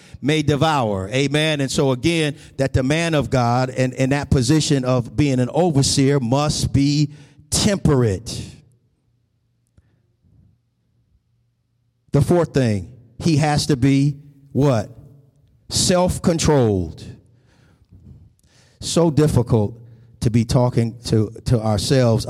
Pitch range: 115-145 Hz